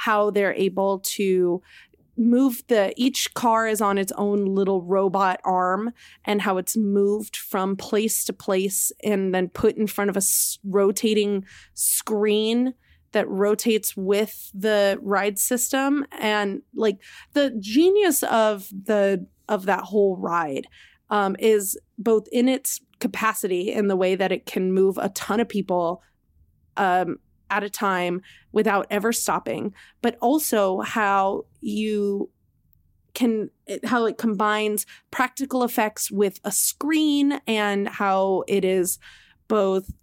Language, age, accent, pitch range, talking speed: English, 20-39, American, 195-230 Hz, 135 wpm